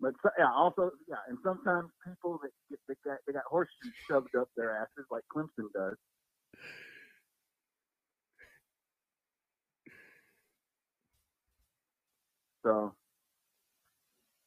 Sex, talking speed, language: male, 90 wpm, English